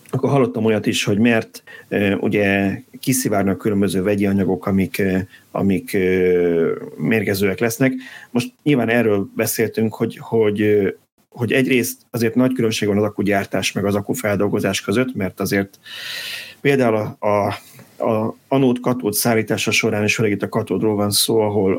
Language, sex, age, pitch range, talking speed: Hungarian, male, 30-49, 100-120 Hz, 140 wpm